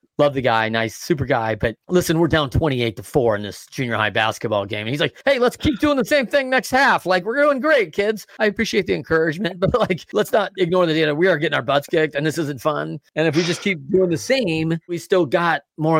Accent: American